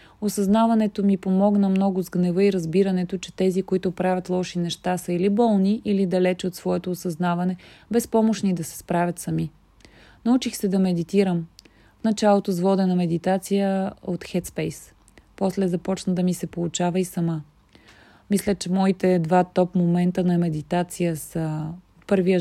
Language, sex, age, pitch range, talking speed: Bulgarian, female, 30-49, 175-205 Hz, 155 wpm